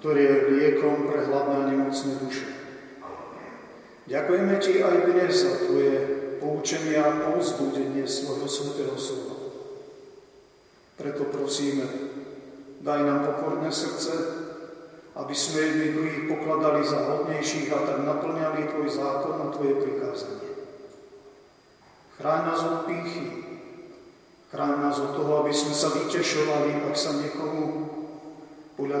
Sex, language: male, Slovak